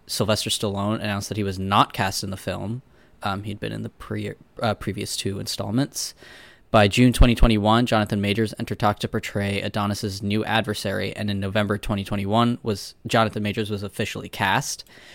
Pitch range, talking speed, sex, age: 100-115 Hz, 170 wpm, male, 10-29